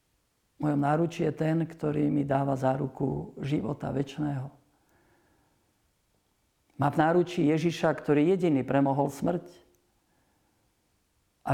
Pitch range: 130-150 Hz